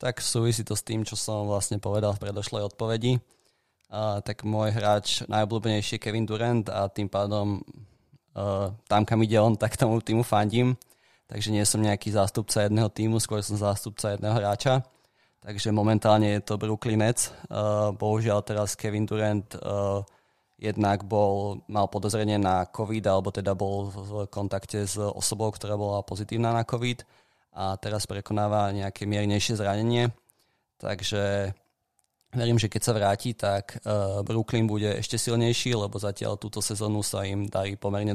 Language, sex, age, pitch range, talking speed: Slovak, male, 20-39, 100-115 Hz, 150 wpm